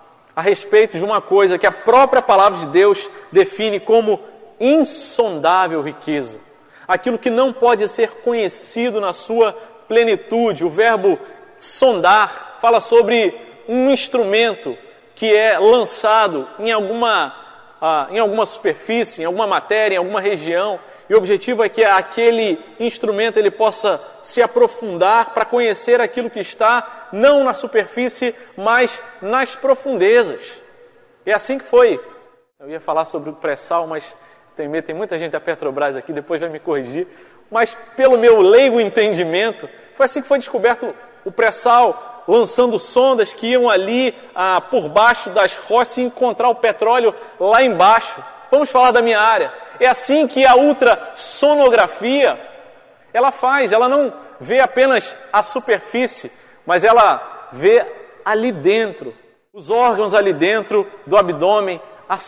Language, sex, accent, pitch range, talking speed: Portuguese, male, Brazilian, 205-260 Hz, 140 wpm